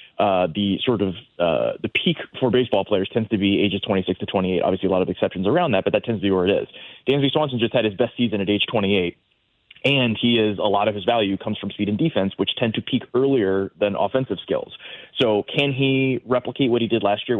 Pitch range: 100-120 Hz